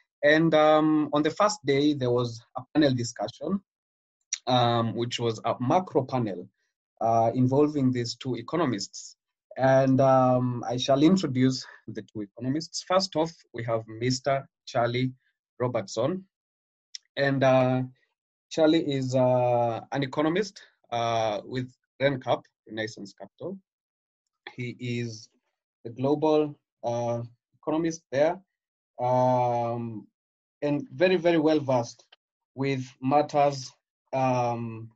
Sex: male